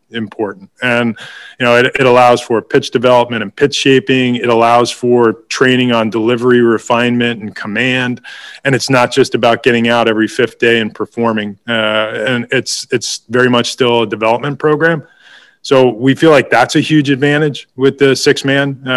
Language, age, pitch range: English, 20-39, 120-135 Hz